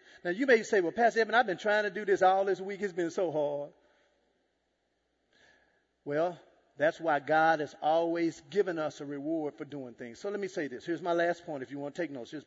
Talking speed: 235 wpm